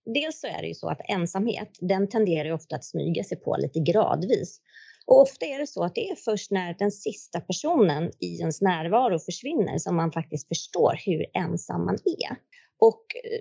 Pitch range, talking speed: 175-230 Hz, 195 wpm